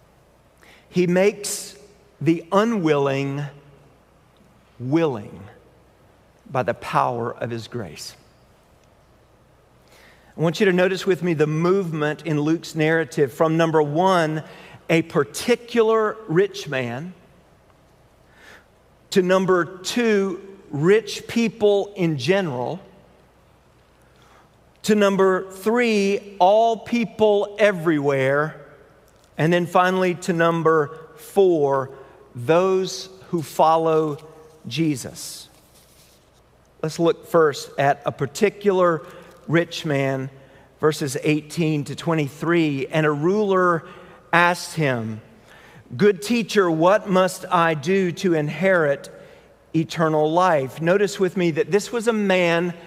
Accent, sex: American, male